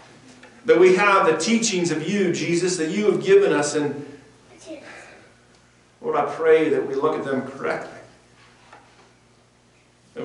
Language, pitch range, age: English, 125-210 Hz, 40-59